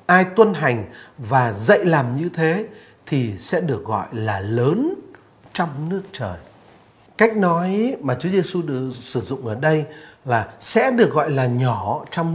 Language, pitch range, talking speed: Vietnamese, 120-180 Hz, 160 wpm